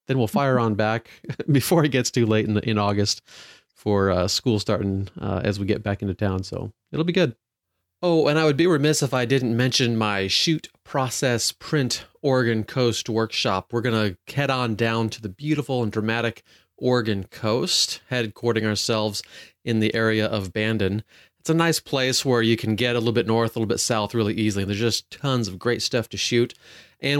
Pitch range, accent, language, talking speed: 110-135 Hz, American, English, 205 wpm